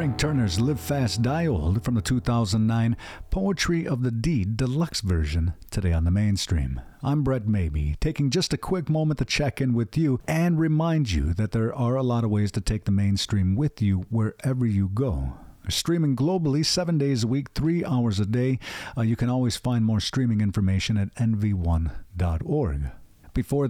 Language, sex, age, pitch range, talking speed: English, male, 50-69, 100-145 Hz, 180 wpm